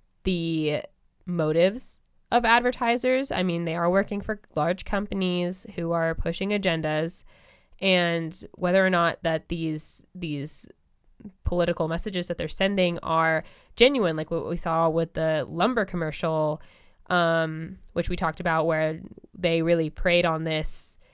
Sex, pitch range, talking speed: female, 160-185 Hz, 140 wpm